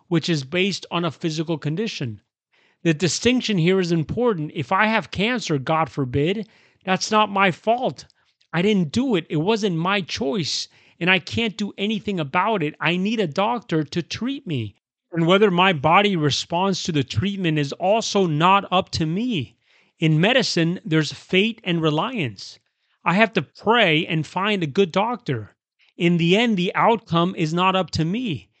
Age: 30-49